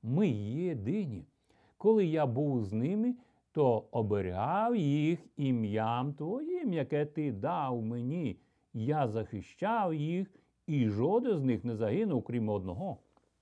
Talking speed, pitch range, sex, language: 120 wpm, 110-175 Hz, male, Ukrainian